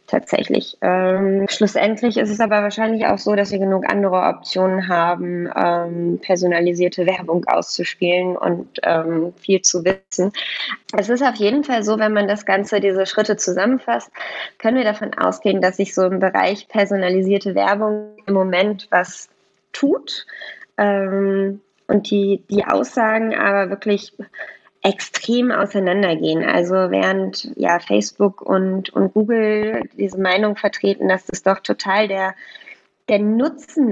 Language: German